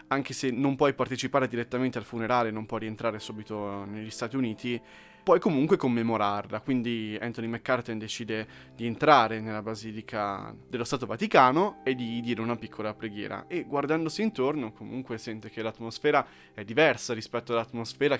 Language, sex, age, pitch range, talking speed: Italian, male, 20-39, 110-135 Hz, 150 wpm